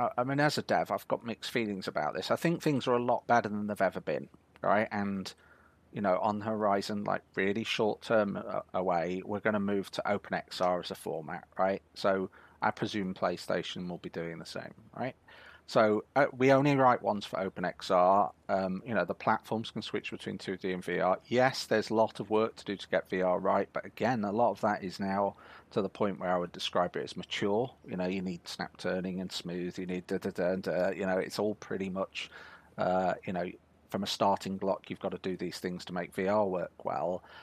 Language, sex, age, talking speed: English, male, 30-49, 225 wpm